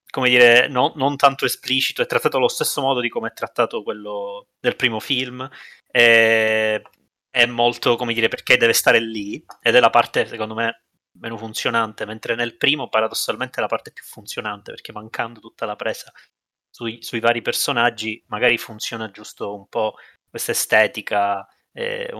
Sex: male